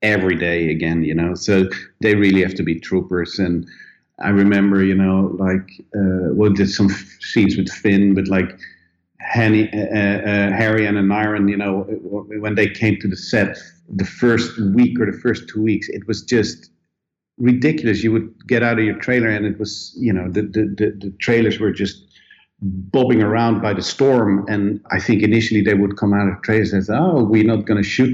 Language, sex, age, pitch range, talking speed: English, male, 50-69, 100-120 Hz, 205 wpm